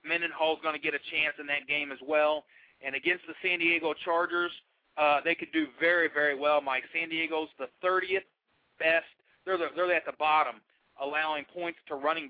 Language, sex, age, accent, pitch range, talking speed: English, male, 40-59, American, 145-170 Hz, 190 wpm